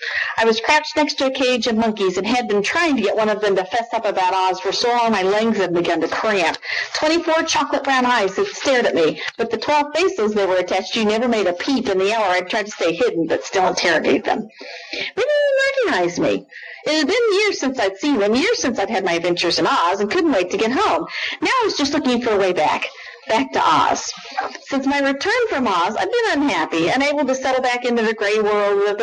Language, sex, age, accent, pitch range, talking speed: English, female, 50-69, American, 195-280 Hz, 250 wpm